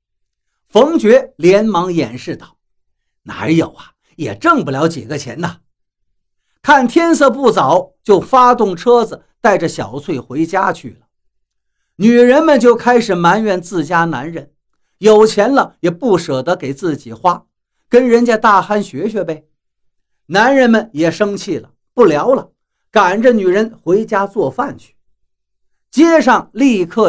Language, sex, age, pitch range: Chinese, male, 50-69, 165-245 Hz